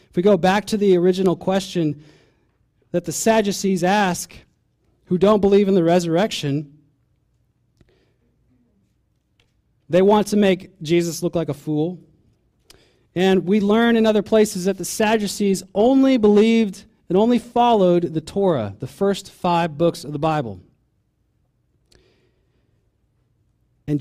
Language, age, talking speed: English, 30-49, 125 wpm